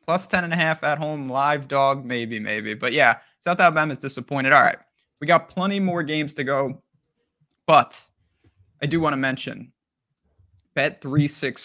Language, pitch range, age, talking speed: English, 130-165 Hz, 20-39, 170 wpm